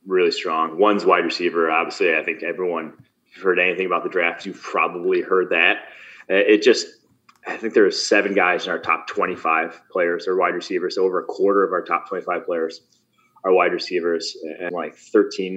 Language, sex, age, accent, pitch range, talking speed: English, male, 20-39, American, 320-420 Hz, 195 wpm